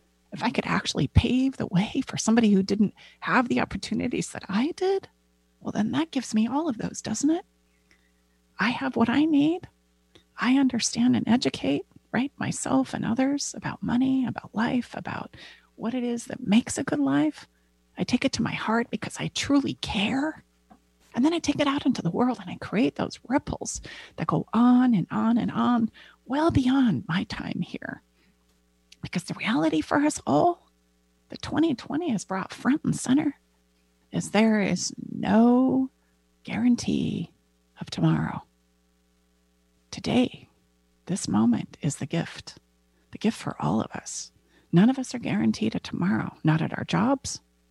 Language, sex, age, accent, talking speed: English, female, 30-49, American, 165 wpm